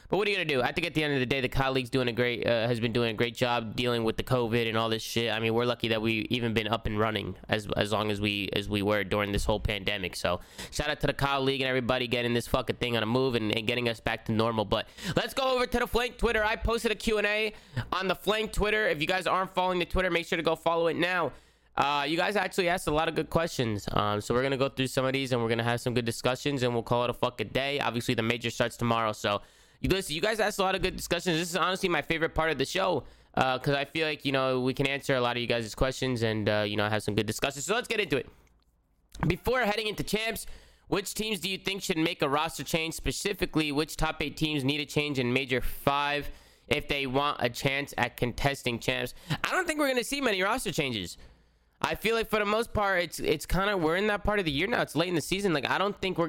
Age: 20-39